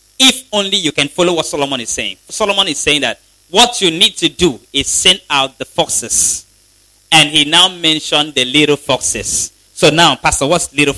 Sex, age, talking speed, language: male, 30-49, 190 wpm, English